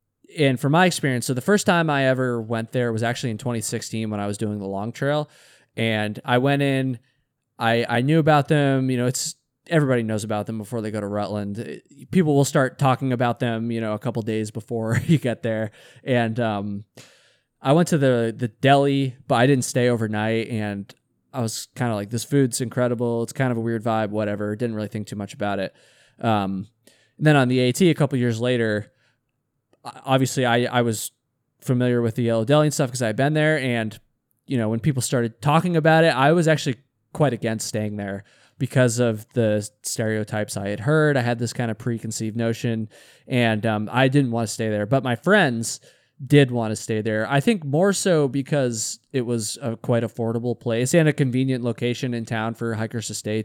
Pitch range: 110-135 Hz